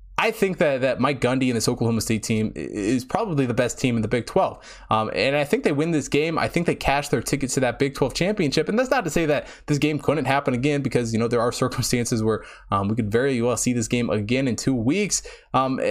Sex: male